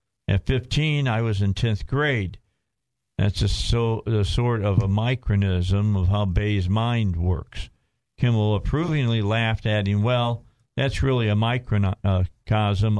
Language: English